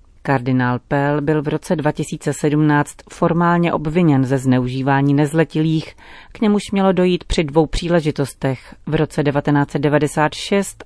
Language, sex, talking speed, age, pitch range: Czech, female, 115 wpm, 40-59, 140-165 Hz